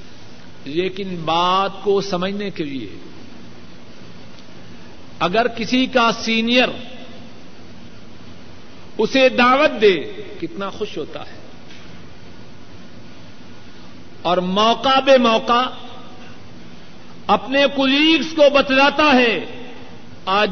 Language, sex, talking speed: Urdu, male, 80 wpm